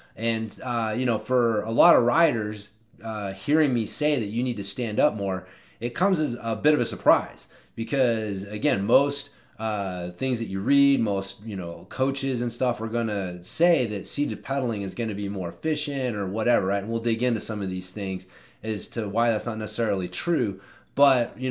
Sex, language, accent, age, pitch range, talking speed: male, English, American, 30-49, 105-130 Hz, 210 wpm